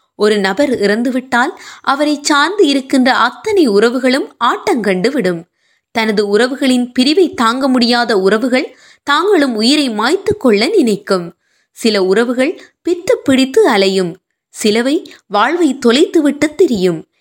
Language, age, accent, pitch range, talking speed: Tamil, 20-39, native, 225-350 Hz, 50 wpm